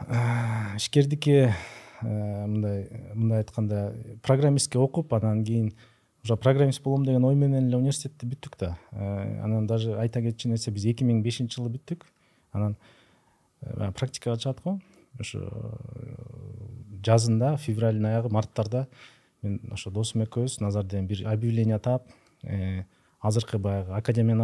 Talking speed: 75 wpm